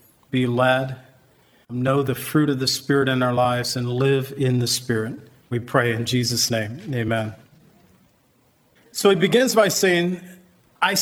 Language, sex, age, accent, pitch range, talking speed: English, male, 40-59, American, 140-170 Hz, 150 wpm